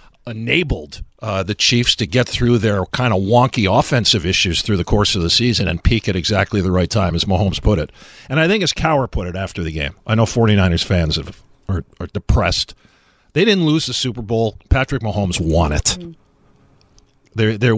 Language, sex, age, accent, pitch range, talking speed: English, male, 50-69, American, 95-130 Hz, 205 wpm